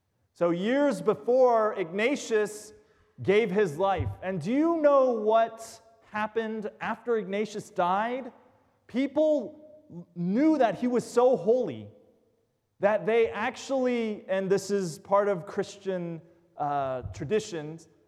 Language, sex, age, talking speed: English, male, 30-49, 115 wpm